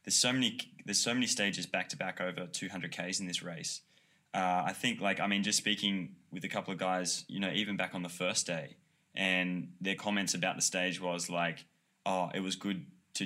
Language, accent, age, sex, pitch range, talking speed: English, Australian, 20-39, male, 85-95 Hz, 215 wpm